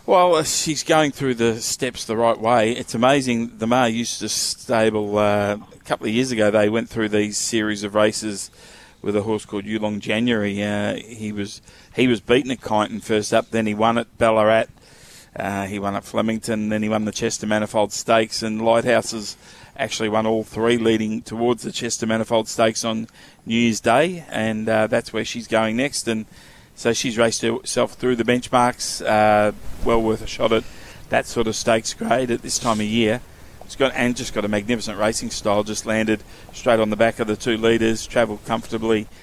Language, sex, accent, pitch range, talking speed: English, male, Australian, 105-115 Hz, 195 wpm